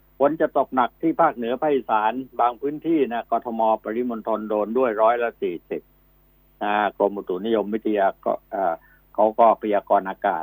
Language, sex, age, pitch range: Thai, male, 60-79, 80-125 Hz